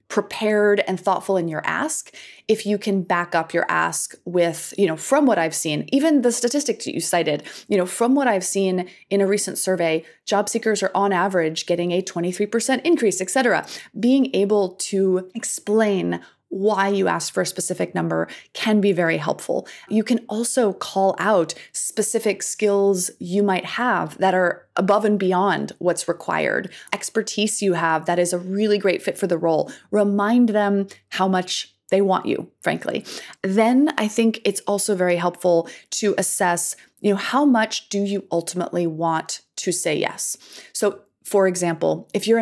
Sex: female